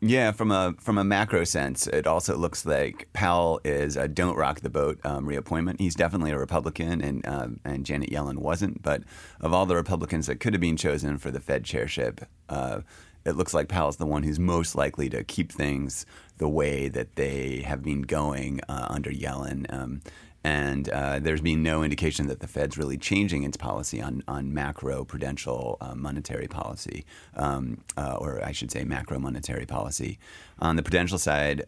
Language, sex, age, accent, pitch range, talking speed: English, male, 30-49, American, 70-85 Hz, 190 wpm